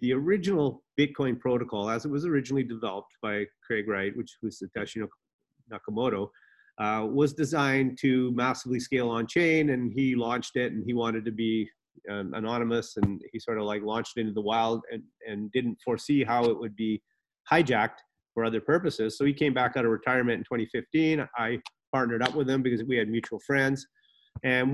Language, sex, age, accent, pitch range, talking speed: English, male, 30-49, American, 115-140 Hz, 185 wpm